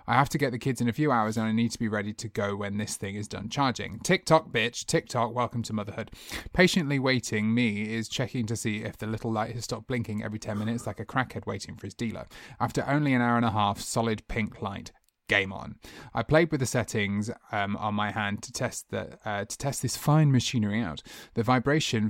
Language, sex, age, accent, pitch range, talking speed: English, male, 30-49, British, 110-135 Hz, 240 wpm